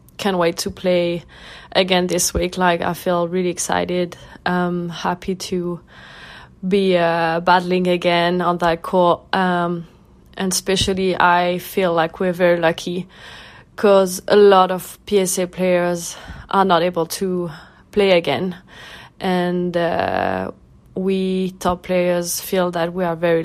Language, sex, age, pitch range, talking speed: English, female, 20-39, 175-190 Hz, 135 wpm